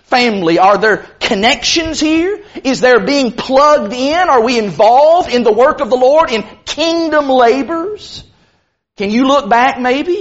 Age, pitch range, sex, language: 40-59, 205-275 Hz, male, English